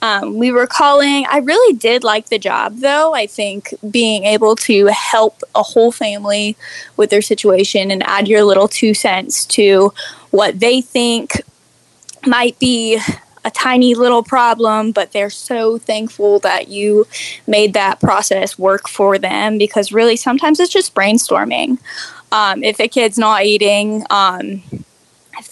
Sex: female